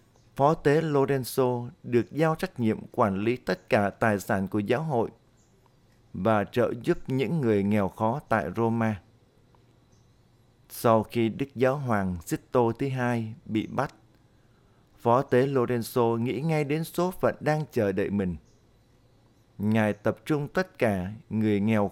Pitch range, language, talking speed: 110-130 Hz, Vietnamese, 150 wpm